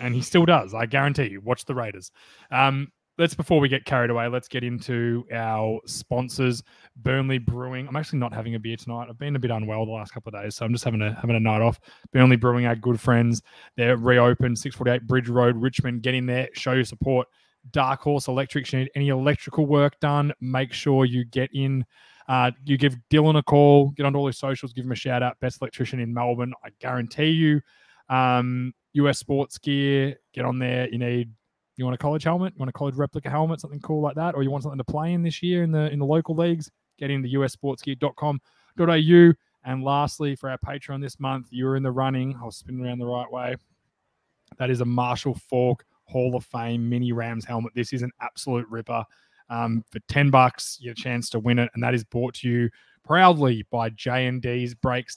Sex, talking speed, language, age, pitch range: male, 215 wpm, English, 20-39, 120-140 Hz